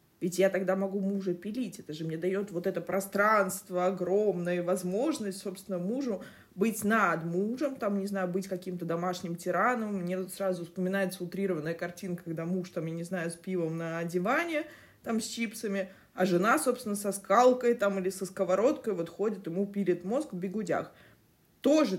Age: 20-39